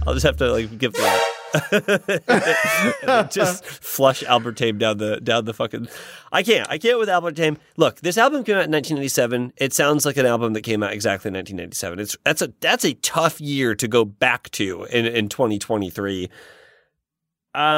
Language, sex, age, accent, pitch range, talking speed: English, male, 30-49, American, 125-175 Hz, 180 wpm